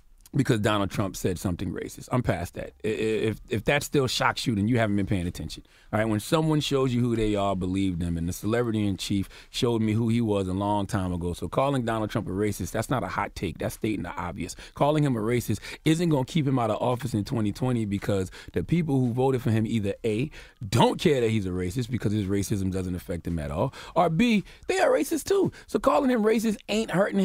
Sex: male